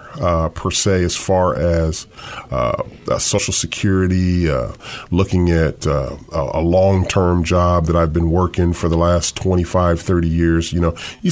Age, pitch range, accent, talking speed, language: 30-49, 85-100 Hz, American, 160 wpm, English